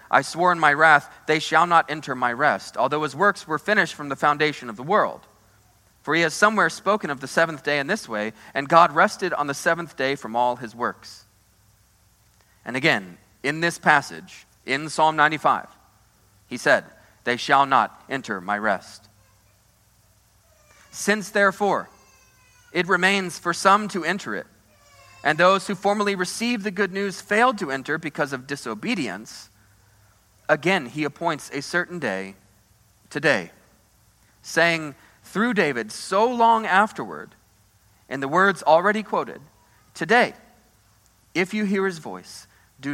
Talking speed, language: 150 wpm, English